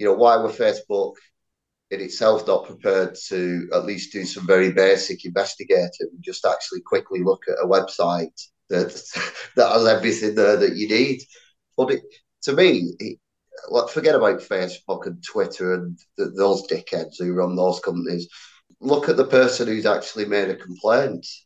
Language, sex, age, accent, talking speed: English, male, 30-49, British, 165 wpm